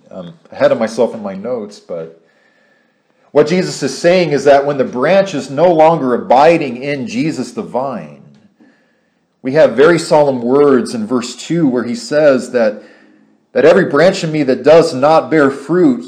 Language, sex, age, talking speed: English, male, 40-59, 175 wpm